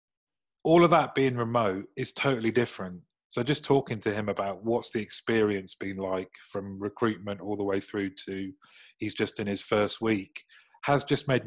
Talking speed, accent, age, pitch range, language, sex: 185 wpm, British, 30-49, 100-120 Hz, English, male